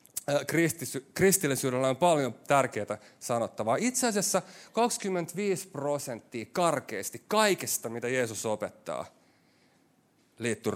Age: 30-49